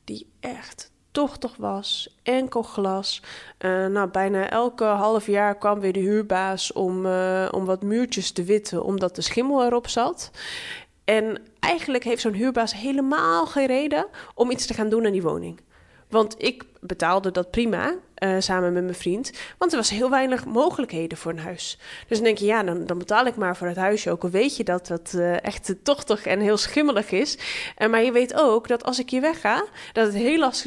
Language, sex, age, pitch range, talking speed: Dutch, female, 20-39, 195-255 Hz, 200 wpm